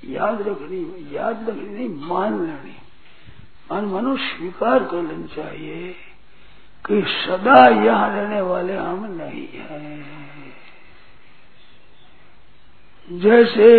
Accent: native